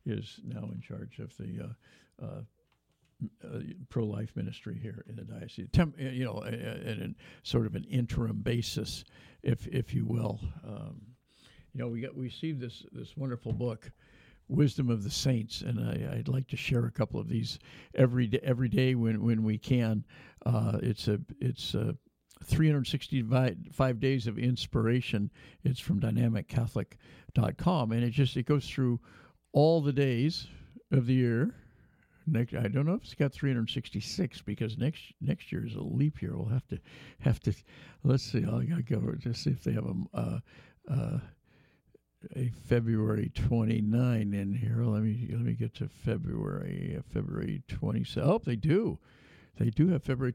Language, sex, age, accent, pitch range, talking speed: English, male, 60-79, American, 115-140 Hz, 170 wpm